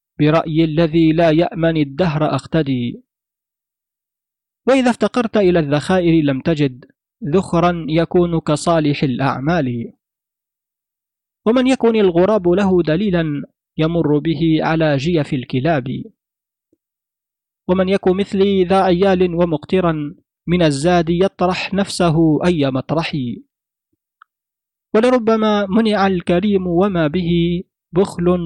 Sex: male